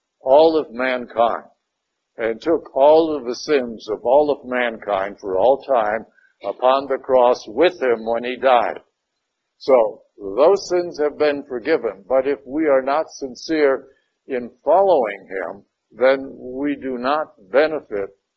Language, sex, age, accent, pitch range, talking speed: English, male, 60-79, American, 120-165 Hz, 145 wpm